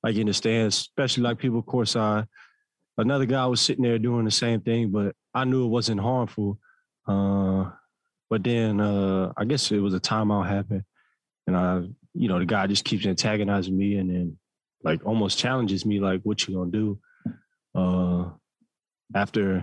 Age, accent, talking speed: 20-39, American, 180 wpm